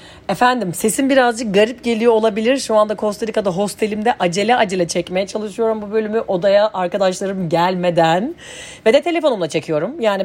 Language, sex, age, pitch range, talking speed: Turkish, female, 40-59, 190-245 Hz, 145 wpm